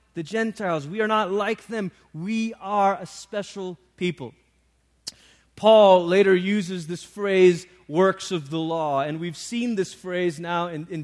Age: 30-49